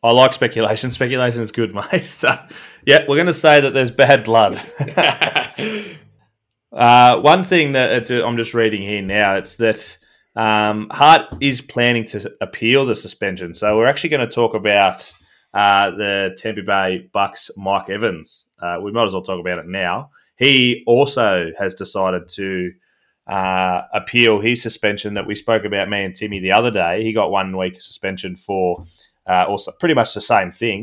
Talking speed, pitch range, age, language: 175 wpm, 95-115 Hz, 20-39, English